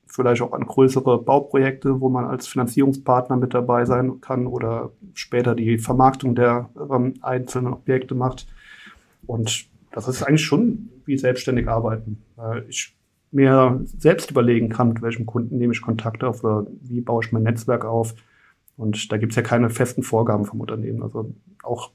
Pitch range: 115-130 Hz